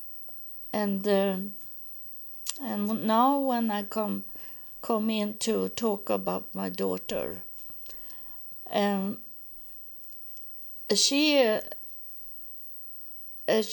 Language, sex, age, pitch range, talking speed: English, female, 60-79, 190-240 Hz, 80 wpm